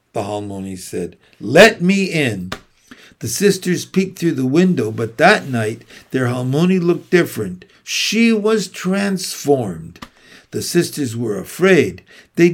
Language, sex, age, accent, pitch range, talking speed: English, male, 60-79, American, 130-185 Hz, 130 wpm